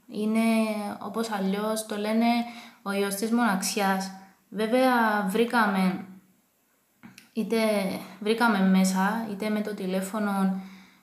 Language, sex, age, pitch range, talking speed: English, female, 20-39, 200-225 Hz, 90 wpm